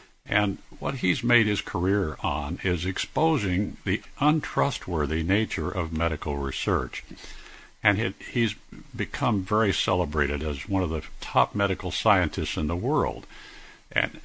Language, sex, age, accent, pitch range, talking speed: English, male, 60-79, American, 85-110 Hz, 130 wpm